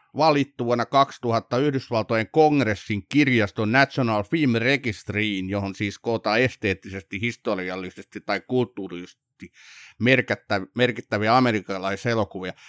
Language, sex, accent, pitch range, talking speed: Finnish, male, native, 105-130 Hz, 80 wpm